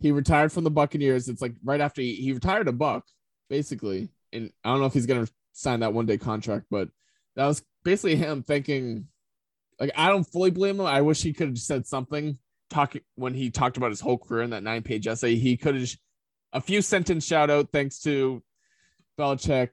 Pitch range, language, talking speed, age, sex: 115-145 Hz, English, 205 wpm, 20-39, male